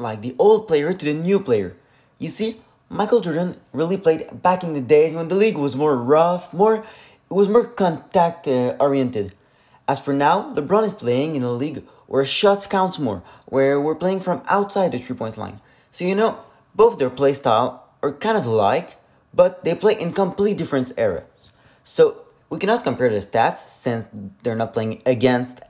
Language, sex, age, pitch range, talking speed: French, male, 20-39, 130-190 Hz, 190 wpm